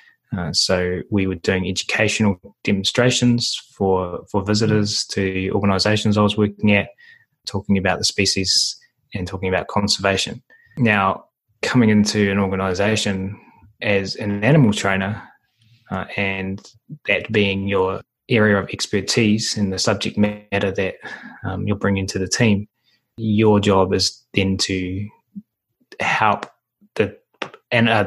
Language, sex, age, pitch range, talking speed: English, male, 20-39, 95-110 Hz, 130 wpm